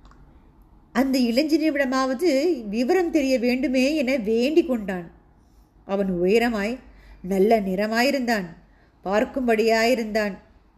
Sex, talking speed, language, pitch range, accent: female, 80 wpm, Tamil, 205-270 Hz, native